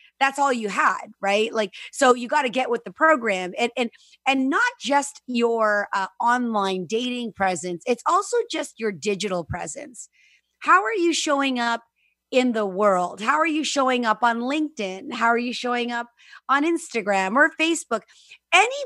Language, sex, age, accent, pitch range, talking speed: English, female, 30-49, American, 225-310 Hz, 175 wpm